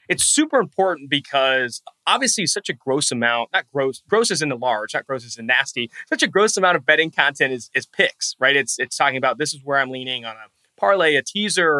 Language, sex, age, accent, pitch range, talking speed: English, male, 20-39, American, 125-175 Hz, 235 wpm